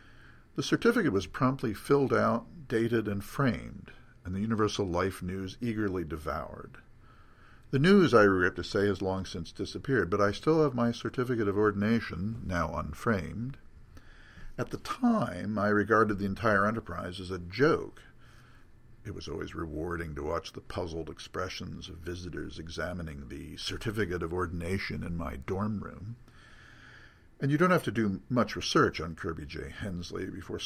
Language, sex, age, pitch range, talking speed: English, male, 50-69, 90-115 Hz, 155 wpm